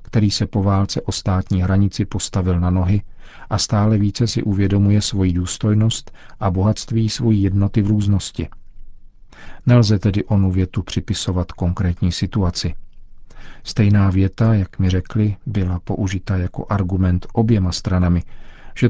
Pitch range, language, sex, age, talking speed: 95-115 Hz, Czech, male, 40-59, 135 wpm